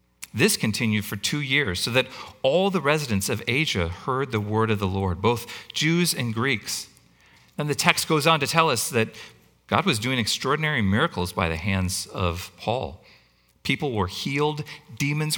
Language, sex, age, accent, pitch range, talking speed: English, male, 40-59, American, 100-145 Hz, 175 wpm